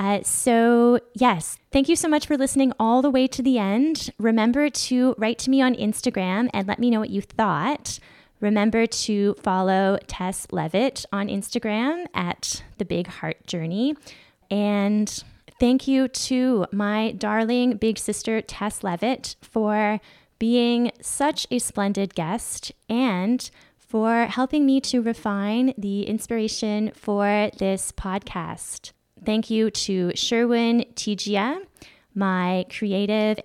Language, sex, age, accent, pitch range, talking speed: English, female, 10-29, American, 195-245 Hz, 135 wpm